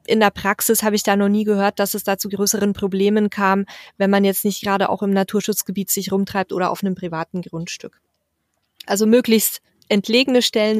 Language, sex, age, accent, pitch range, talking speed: German, female, 20-39, German, 195-215 Hz, 195 wpm